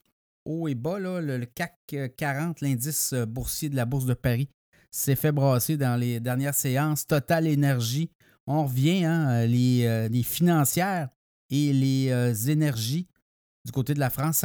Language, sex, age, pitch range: French, male, 60-79, 125-150 Hz